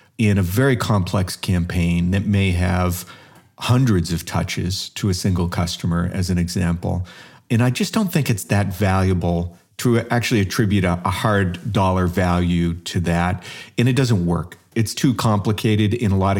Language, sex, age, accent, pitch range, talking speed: English, male, 40-59, American, 90-110 Hz, 165 wpm